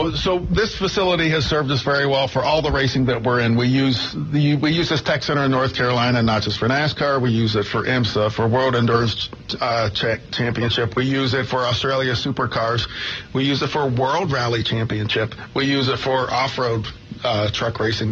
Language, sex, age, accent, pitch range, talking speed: English, male, 50-69, American, 120-135 Hz, 195 wpm